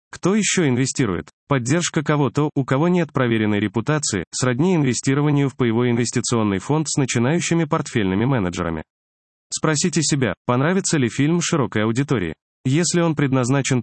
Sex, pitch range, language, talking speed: male, 115-150 Hz, Russian, 130 wpm